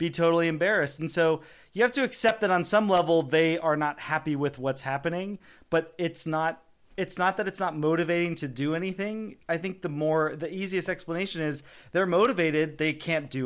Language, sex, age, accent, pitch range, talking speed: English, male, 30-49, American, 145-185 Hz, 200 wpm